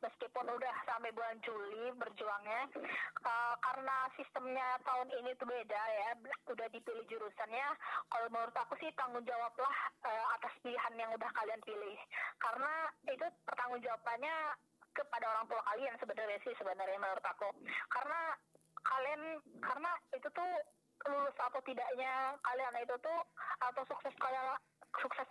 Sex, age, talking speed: female, 20-39, 135 wpm